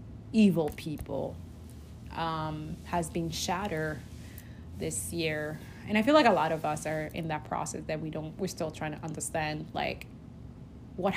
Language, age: English, 20-39